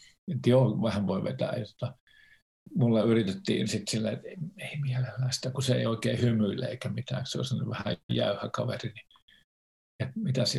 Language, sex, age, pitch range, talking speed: Finnish, male, 50-69, 105-135 Hz, 145 wpm